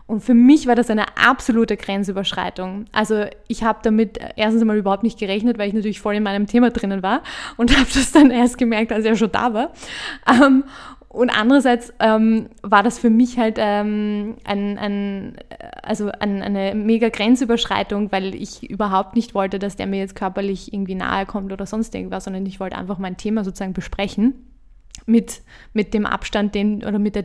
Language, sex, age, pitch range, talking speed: German, female, 20-39, 205-235 Hz, 170 wpm